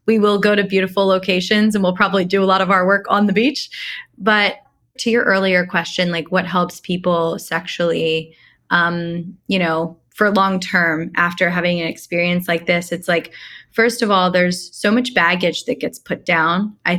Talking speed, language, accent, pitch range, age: 190 wpm, English, American, 175-210 Hz, 20-39